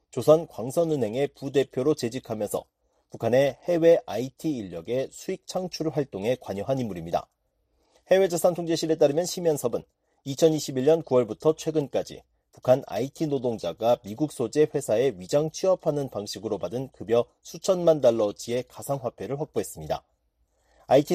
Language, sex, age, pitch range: Korean, male, 40-59, 125-165 Hz